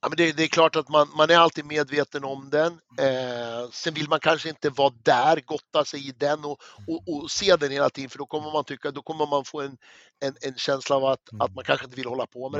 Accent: native